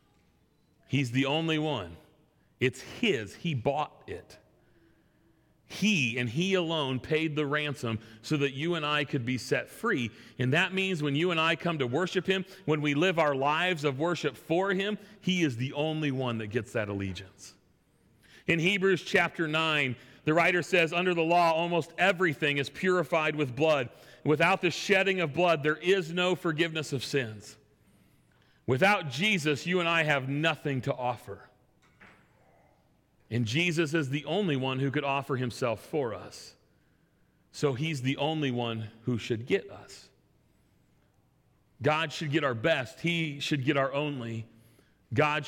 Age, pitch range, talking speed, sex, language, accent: 40-59, 135-175 Hz, 160 wpm, male, English, American